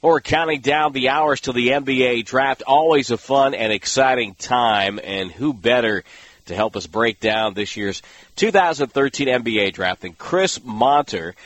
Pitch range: 105-135 Hz